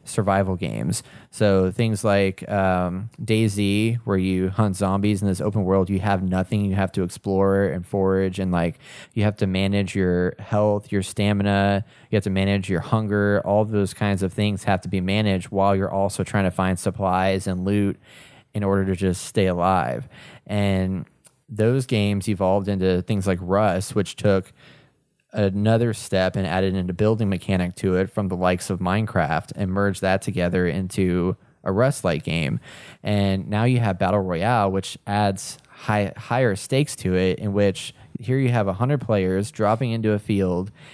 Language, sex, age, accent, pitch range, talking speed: English, male, 20-39, American, 95-110 Hz, 180 wpm